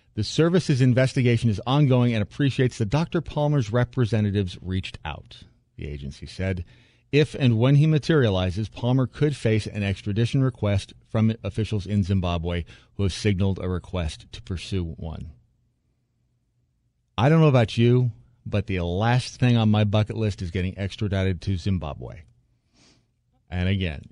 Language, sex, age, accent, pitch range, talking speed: English, male, 40-59, American, 95-120 Hz, 145 wpm